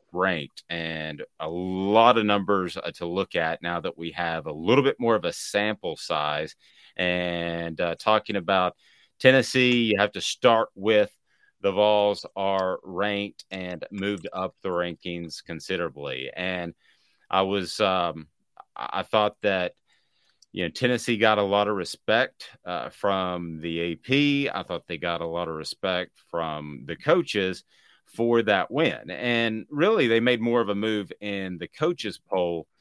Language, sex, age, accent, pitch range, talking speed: English, male, 30-49, American, 85-105 Hz, 155 wpm